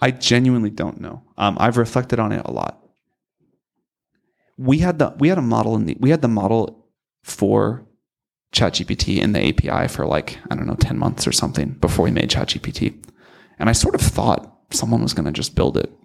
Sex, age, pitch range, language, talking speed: male, 30-49, 105-125 Hz, English, 200 wpm